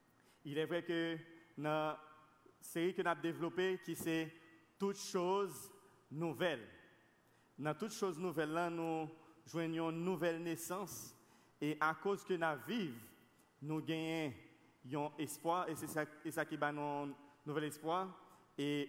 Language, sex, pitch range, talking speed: French, male, 145-175 Hz, 135 wpm